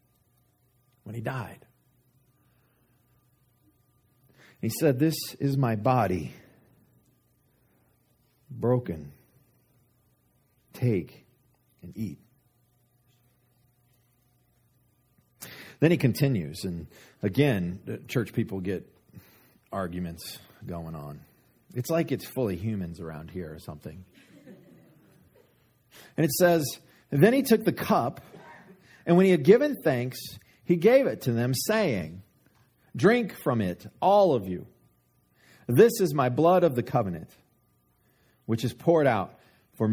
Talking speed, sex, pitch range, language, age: 105 wpm, male, 115-145 Hz, English, 40-59